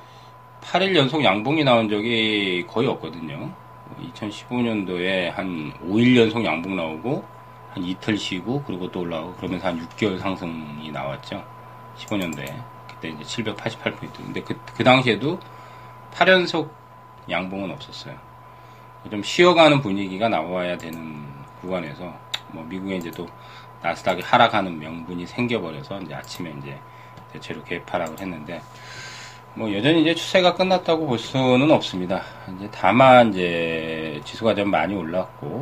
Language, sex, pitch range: Korean, male, 85-120 Hz